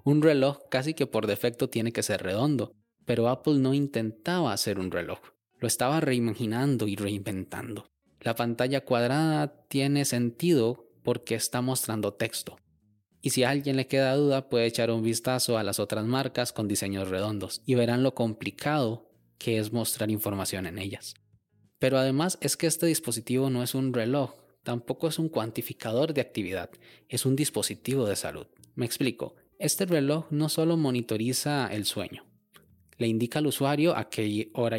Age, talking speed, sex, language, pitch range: 20-39, 165 wpm, male, Spanish, 110-140 Hz